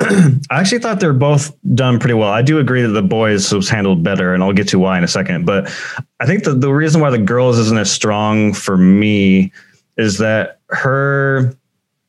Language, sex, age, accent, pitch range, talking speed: English, male, 30-49, American, 95-130 Hz, 210 wpm